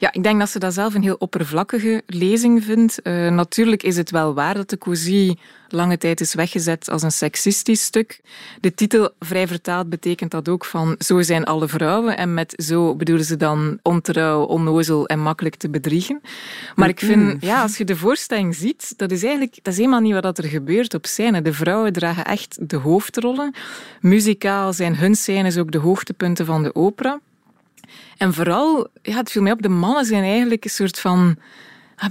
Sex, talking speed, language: female, 195 wpm, Dutch